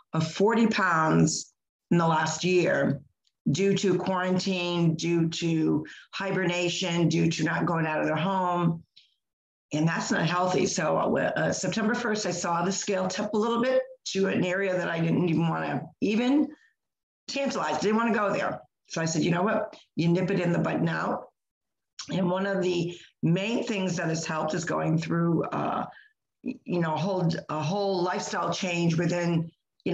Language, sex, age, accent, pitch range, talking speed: English, female, 50-69, American, 165-195 Hz, 180 wpm